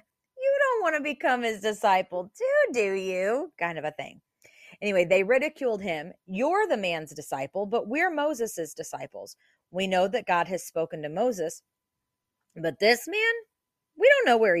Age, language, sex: 30-49, English, female